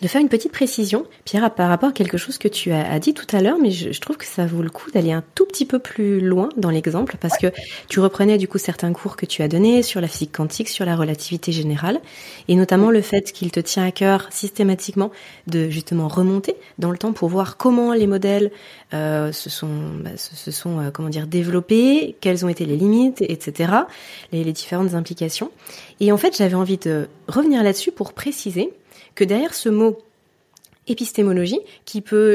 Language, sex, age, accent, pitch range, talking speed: French, female, 30-49, French, 180-230 Hz, 210 wpm